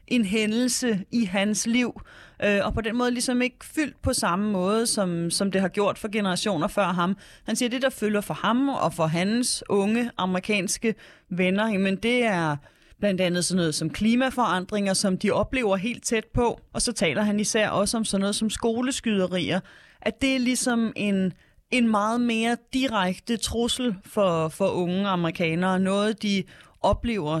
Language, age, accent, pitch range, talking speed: Danish, 30-49, native, 185-225 Hz, 180 wpm